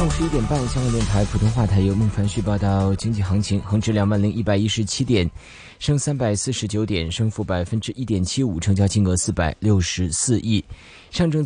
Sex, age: male, 20-39